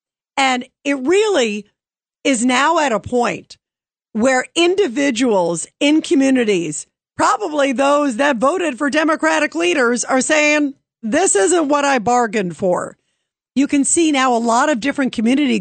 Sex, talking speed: female, 140 wpm